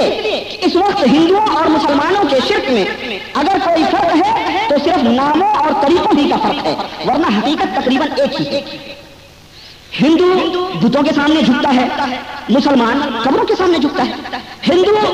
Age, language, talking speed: 50-69, Hindi, 155 wpm